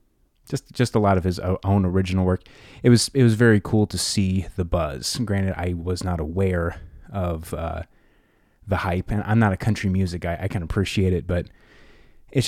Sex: male